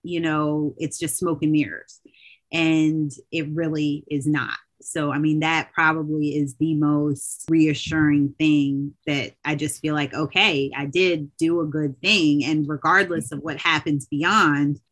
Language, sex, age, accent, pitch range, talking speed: English, female, 30-49, American, 145-165 Hz, 160 wpm